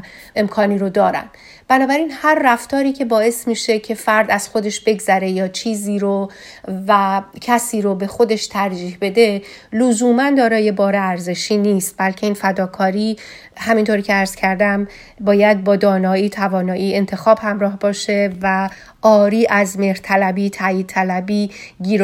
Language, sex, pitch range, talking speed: Persian, female, 190-220 Hz, 135 wpm